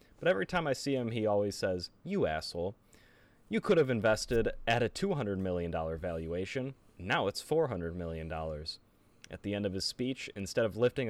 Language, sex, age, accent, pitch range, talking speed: English, male, 30-49, American, 95-130 Hz, 180 wpm